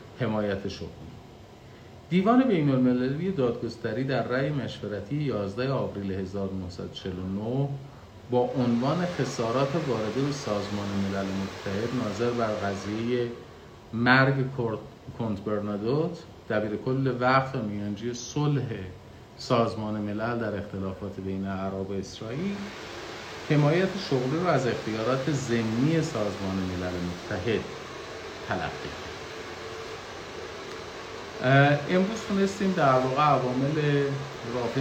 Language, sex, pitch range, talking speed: Persian, male, 105-135 Hz, 90 wpm